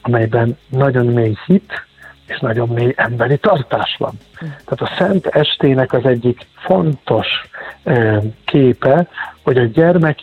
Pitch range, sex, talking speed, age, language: 115-145 Hz, male, 125 wpm, 50-69, Hungarian